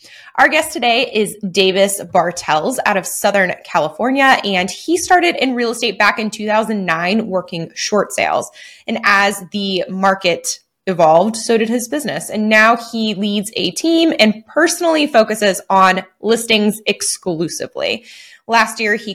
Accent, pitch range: American, 185-240 Hz